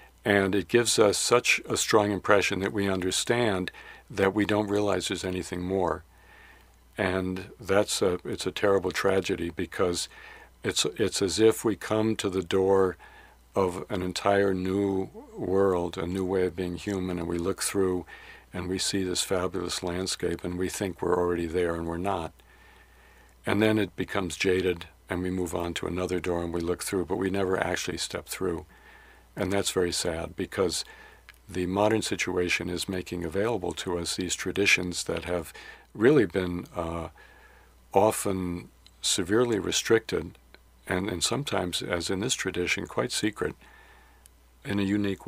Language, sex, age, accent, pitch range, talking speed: English, male, 60-79, American, 90-100 Hz, 160 wpm